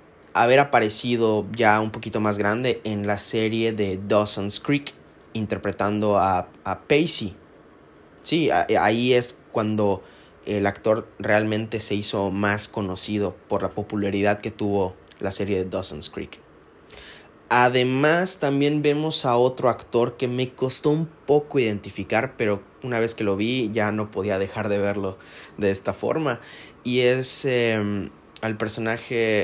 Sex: male